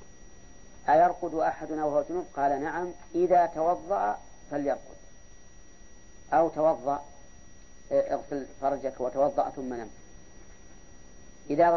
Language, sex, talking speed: Arabic, female, 85 wpm